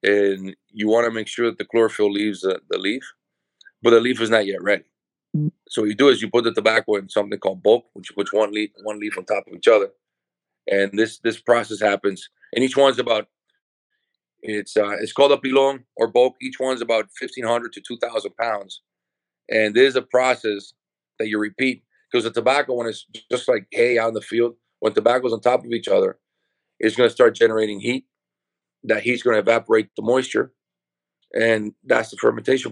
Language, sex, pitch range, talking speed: English, male, 105-130 Hz, 205 wpm